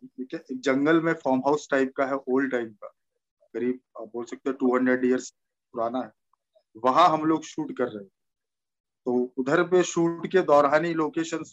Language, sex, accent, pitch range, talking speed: Hindi, male, native, 130-165 Hz, 175 wpm